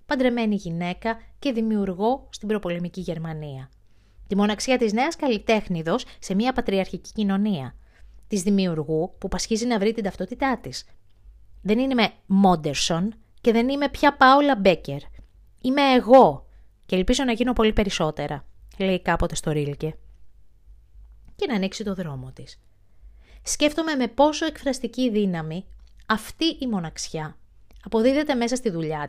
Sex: female